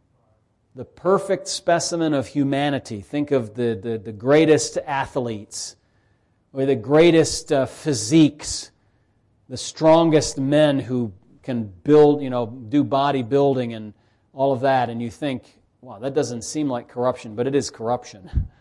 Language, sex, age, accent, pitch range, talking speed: English, male, 40-59, American, 110-145 Hz, 140 wpm